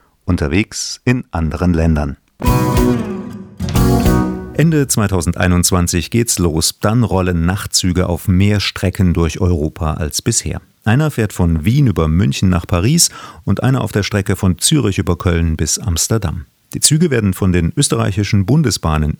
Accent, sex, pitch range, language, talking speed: German, male, 85-115 Hz, German, 140 wpm